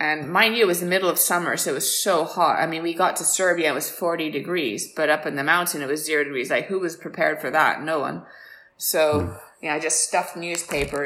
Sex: female